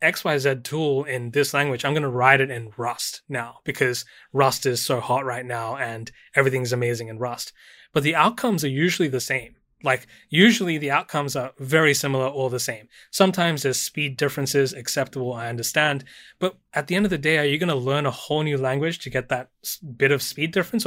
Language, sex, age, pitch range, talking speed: English, male, 20-39, 125-145 Hz, 205 wpm